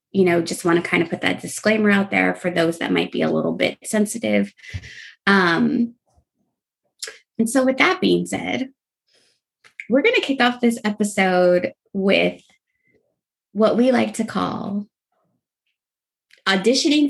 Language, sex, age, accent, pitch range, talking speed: English, female, 20-39, American, 180-265 Hz, 145 wpm